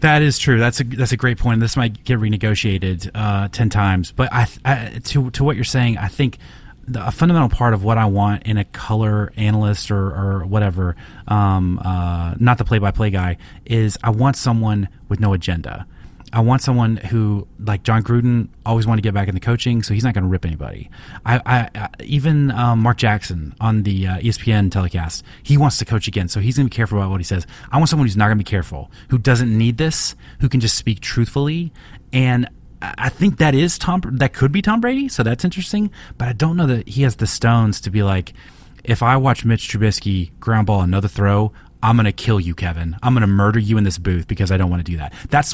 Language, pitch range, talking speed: English, 100-125 Hz, 235 wpm